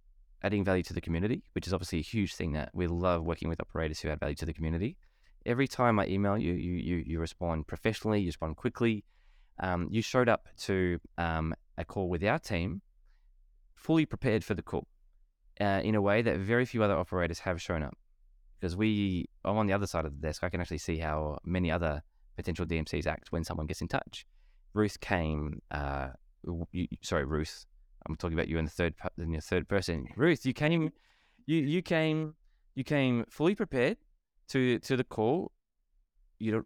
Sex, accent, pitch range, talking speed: male, Australian, 85-110 Hz, 200 wpm